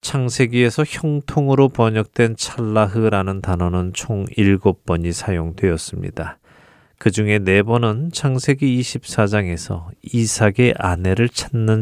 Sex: male